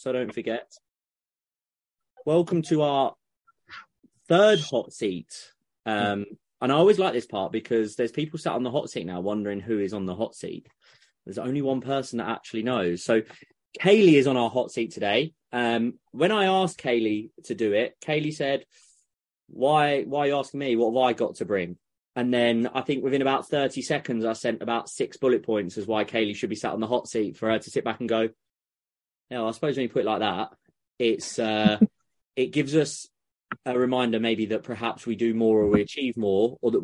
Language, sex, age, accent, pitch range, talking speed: English, male, 20-39, British, 105-135 Hz, 205 wpm